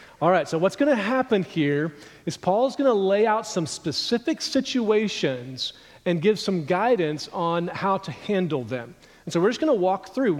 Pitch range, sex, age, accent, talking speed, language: 160-205 Hz, male, 40-59, American, 195 wpm, English